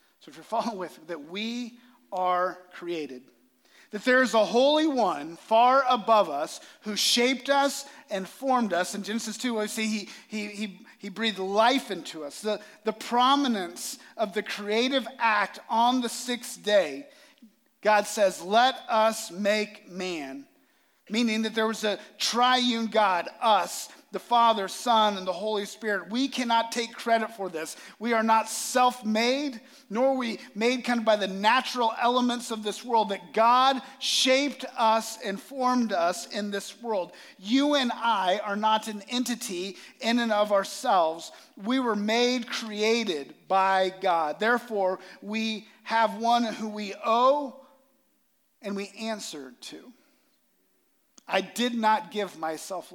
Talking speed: 155 wpm